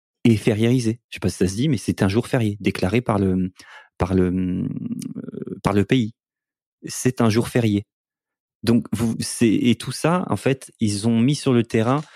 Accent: French